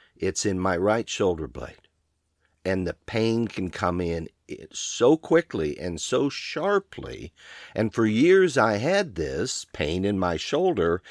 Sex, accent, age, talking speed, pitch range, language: male, American, 50-69, 145 wpm, 80-100 Hz, English